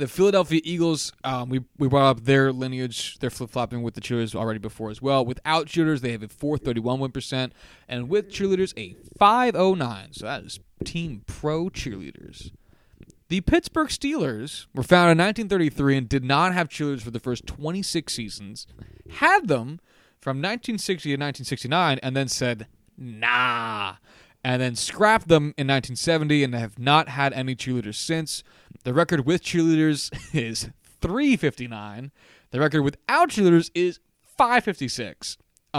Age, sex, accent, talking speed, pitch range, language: 20-39, male, American, 155 wpm, 125-170 Hz, English